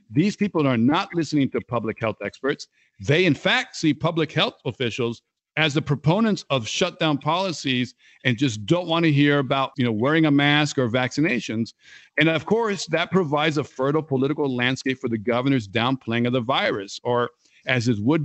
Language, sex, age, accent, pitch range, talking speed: English, male, 50-69, American, 125-165 Hz, 185 wpm